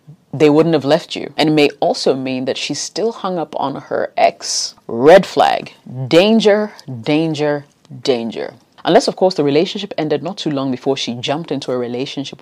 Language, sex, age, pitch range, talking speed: English, female, 30-49, 135-180 Hz, 185 wpm